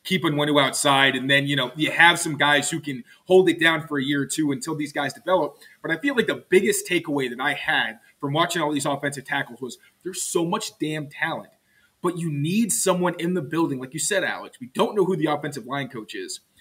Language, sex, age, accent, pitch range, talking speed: English, male, 30-49, American, 150-195 Hz, 240 wpm